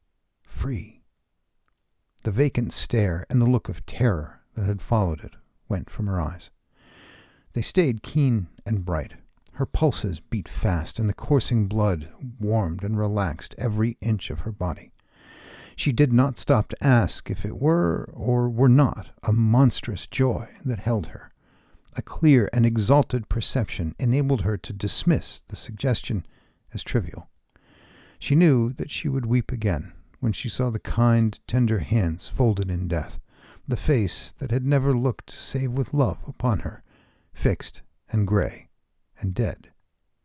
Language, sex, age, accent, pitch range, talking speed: English, male, 50-69, American, 95-125 Hz, 150 wpm